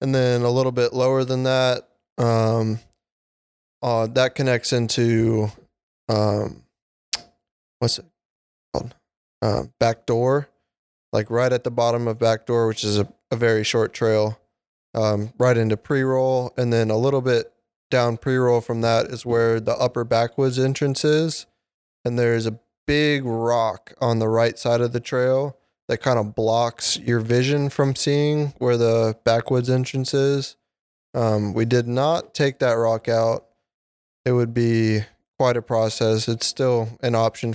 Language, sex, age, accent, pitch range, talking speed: English, male, 20-39, American, 115-125 Hz, 155 wpm